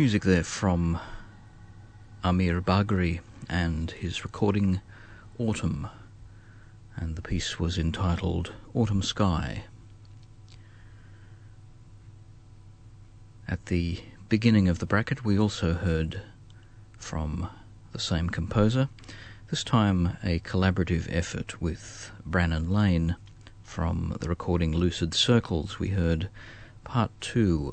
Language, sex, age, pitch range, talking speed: English, male, 40-59, 90-110 Hz, 100 wpm